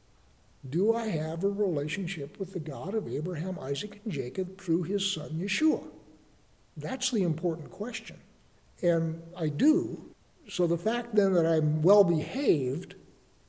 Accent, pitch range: American, 155-195 Hz